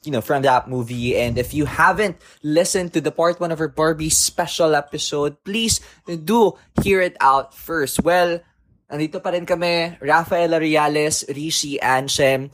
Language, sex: Filipino, male